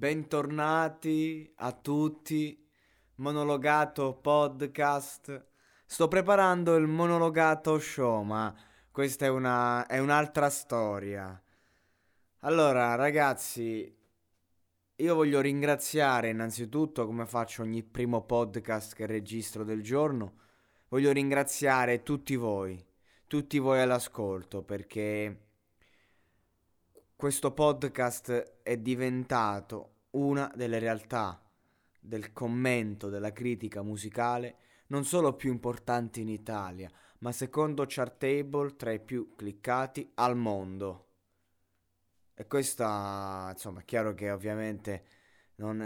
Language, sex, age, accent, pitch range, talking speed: Italian, male, 20-39, native, 105-140 Hz, 95 wpm